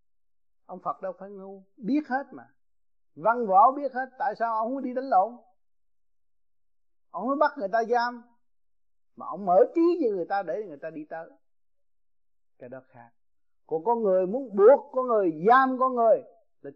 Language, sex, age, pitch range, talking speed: Vietnamese, male, 30-49, 165-265 Hz, 185 wpm